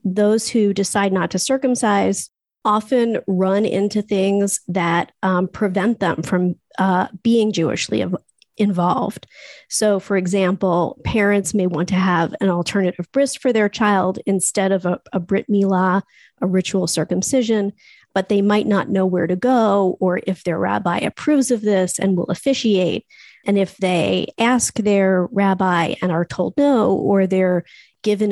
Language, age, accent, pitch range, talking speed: English, 40-59, American, 185-210 Hz, 155 wpm